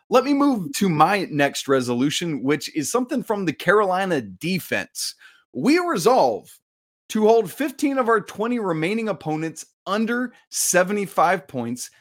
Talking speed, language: 135 wpm, English